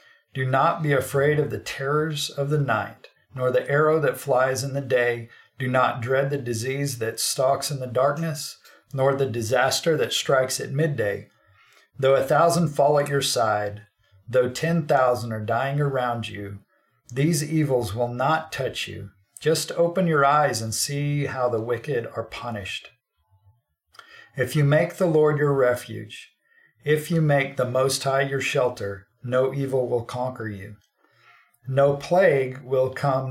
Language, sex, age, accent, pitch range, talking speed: English, male, 50-69, American, 115-145 Hz, 160 wpm